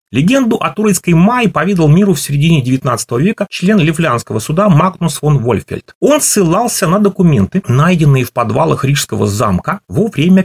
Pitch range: 120-190 Hz